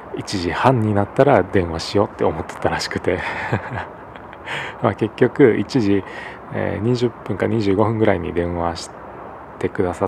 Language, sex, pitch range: Japanese, male, 85-105 Hz